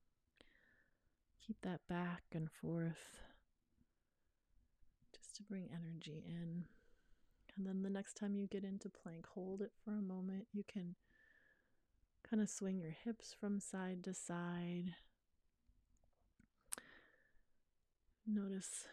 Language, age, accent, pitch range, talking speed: English, 30-49, American, 170-200 Hz, 115 wpm